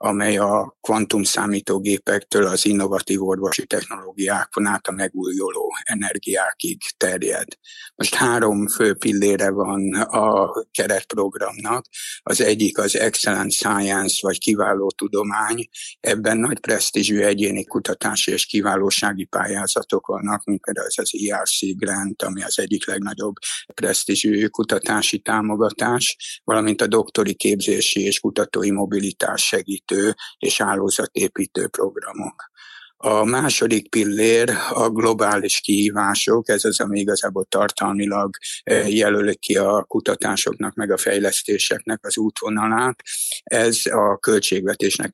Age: 60-79